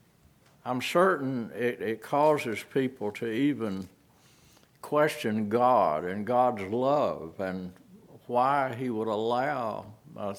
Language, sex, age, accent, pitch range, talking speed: English, male, 60-79, American, 115-155 Hz, 110 wpm